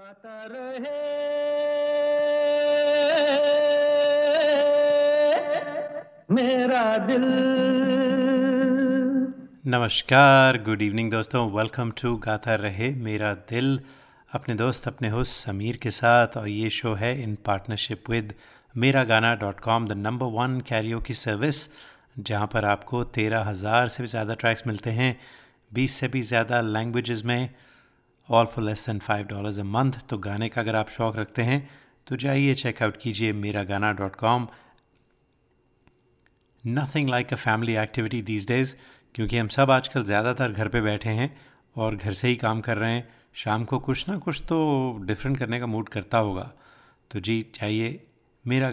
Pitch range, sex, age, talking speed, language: 110-140 Hz, male, 30-49, 140 wpm, Hindi